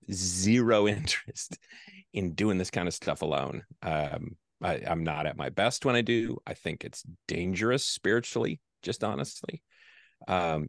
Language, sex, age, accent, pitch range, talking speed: English, male, 40-59, American, 85-115 Hz, 150 wpm